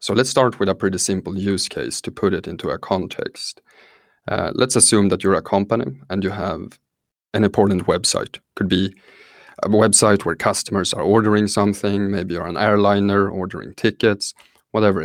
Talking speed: 175 wpm